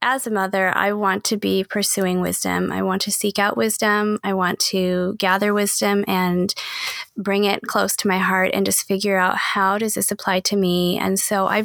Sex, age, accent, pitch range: female, 20-39, American, 190-225 Hz